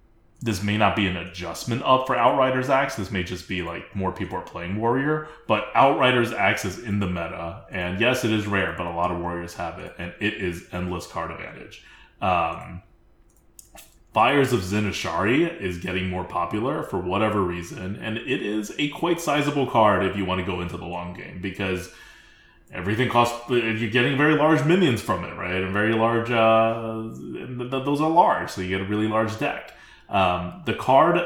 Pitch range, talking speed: 90-120 Hz, 190 wpm